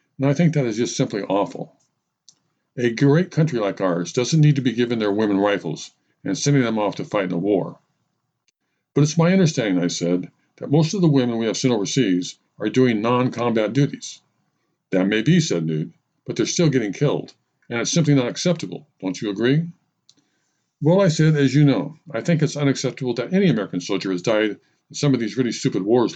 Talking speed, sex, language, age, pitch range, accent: 205 wpm, male, English, 50-69, 115-155 Hz, American